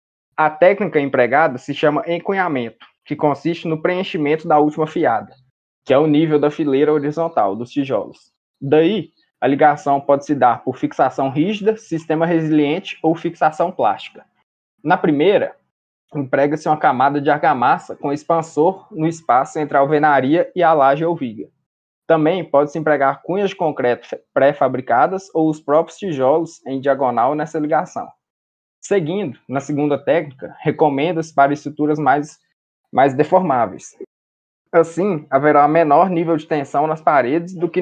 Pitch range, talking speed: 140-165 Hz, 145 wpm